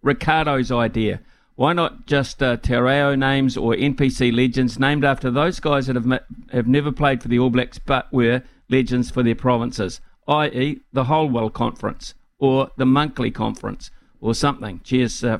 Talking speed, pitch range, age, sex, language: 170 wpm, 115-135 Hz, 50-69, male, English